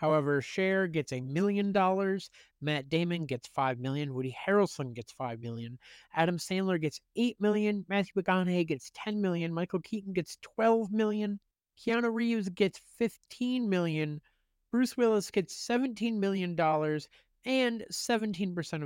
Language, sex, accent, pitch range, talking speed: English, male, American, 135-190 Hz, 140 wpm